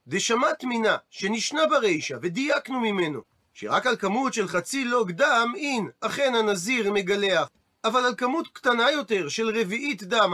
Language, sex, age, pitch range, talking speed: Hebrew, male, 40-59, 180-245 Hz, 150 wpm